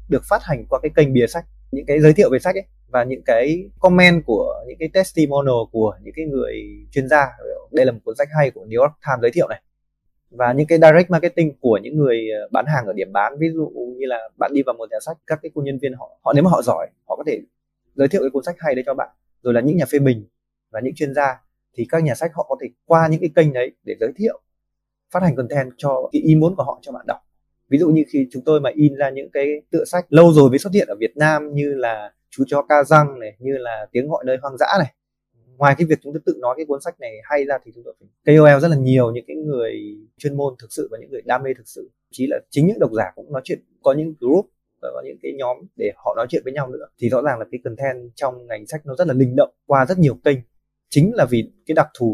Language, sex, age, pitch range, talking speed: Vietnamese, male, 20-39, 125-160 Hz, 280 wpm